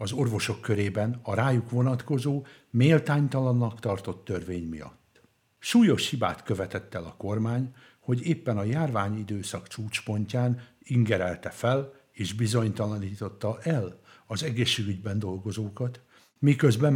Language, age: Hungarian, 60-79